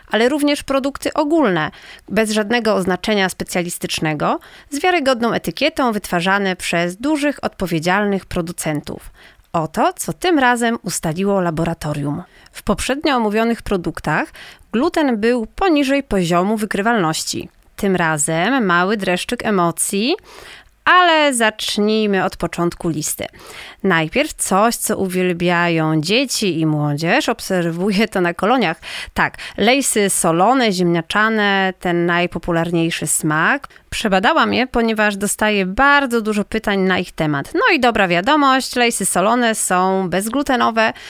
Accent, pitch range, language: native, 175-245 Hz, Polish